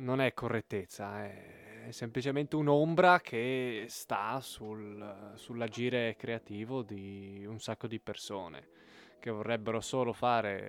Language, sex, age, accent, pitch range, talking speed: Italian, male, 20-39, native, 105-130 Hz, 110 wpm